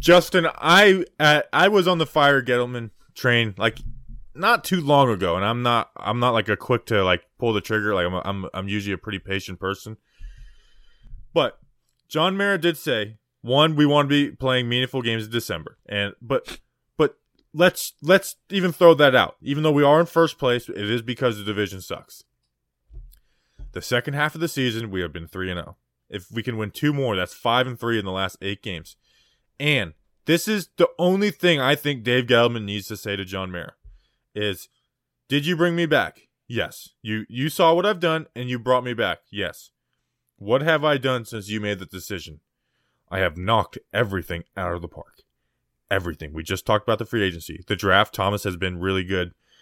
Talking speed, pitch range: 205 wpm, 95-145 Hz